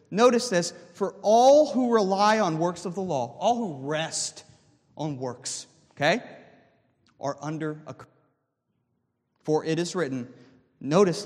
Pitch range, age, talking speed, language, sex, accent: 160-230 Hz, 40-59, 140 wpm, English, male, American